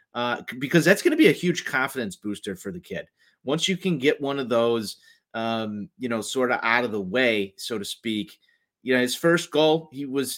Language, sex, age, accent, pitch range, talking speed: English, male, 30-49, American, 120-150 Hz, 225 wpm